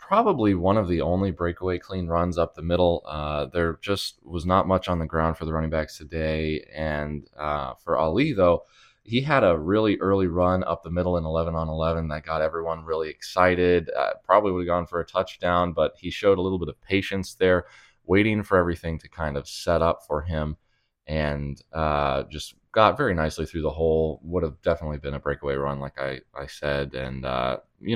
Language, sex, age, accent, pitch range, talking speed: English, male, 20-39, American, 75-90 Hz, 205 wpm